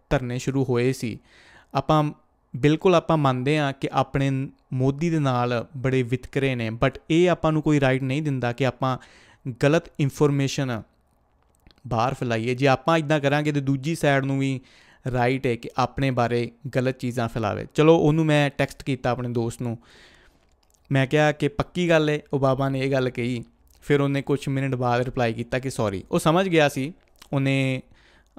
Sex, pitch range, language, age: male, 120-145 Hz, Punjabi, 30-49